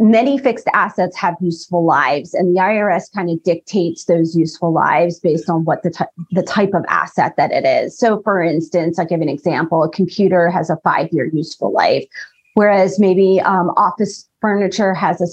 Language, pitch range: English, 175-215 Hz